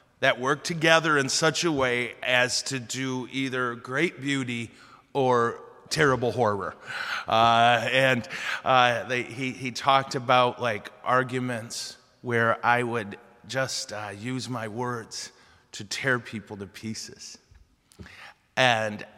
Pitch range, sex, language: 115-135 Hz, male, English